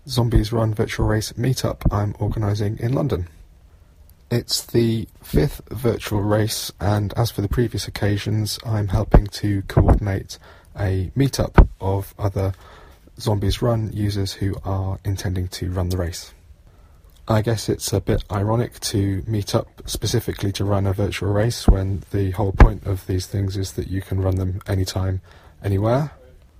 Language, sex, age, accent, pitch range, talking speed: English, male, 20-39, British, 90-105 Hz, 155 wpm